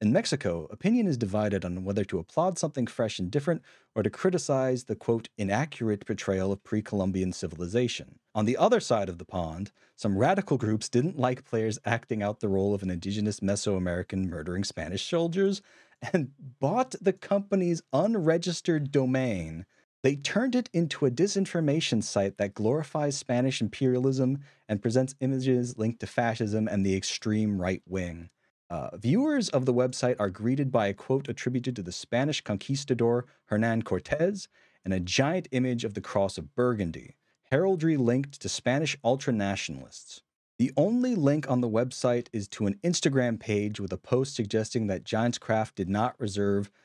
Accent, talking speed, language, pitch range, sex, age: American, 160 wpm, English, 100-135 Hz, male, 40-59